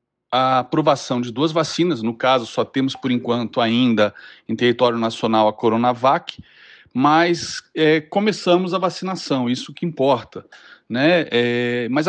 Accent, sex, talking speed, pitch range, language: Brazilian, male, 130 wpm, 125-180 Hz, Portuguese